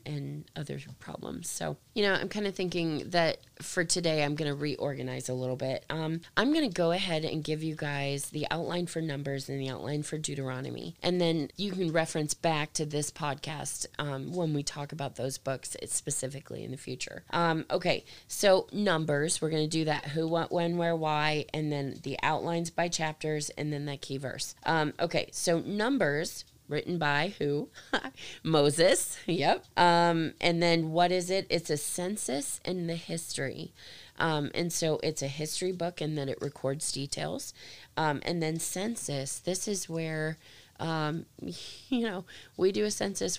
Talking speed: 180 wpm